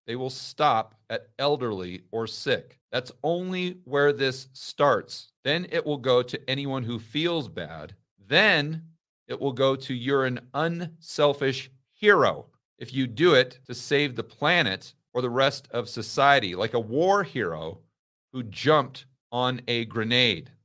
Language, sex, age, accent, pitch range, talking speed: English, male, 40-59, American, 125-155 Hz, 150 wpm